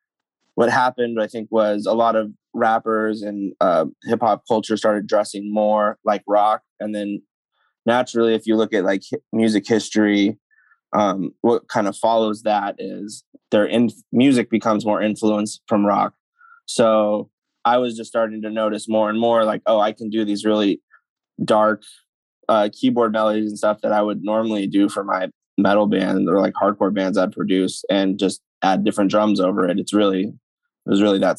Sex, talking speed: male, 185 wpm